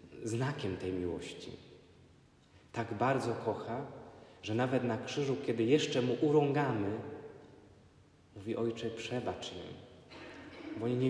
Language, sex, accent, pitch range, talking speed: Polish, male, native, 95-115 Hz, 115 wpm